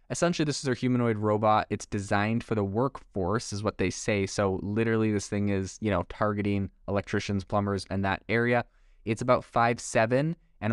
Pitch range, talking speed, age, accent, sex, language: 100-120 Hz, 180 wpm, 20-39, American, male, English